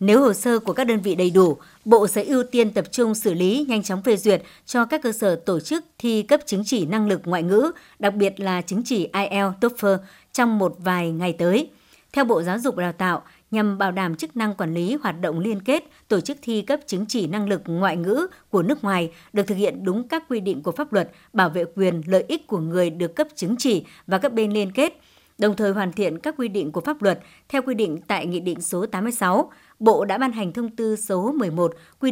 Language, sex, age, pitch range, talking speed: Vietnamese, male, 60-79, 185-235 Hz, 240 wpm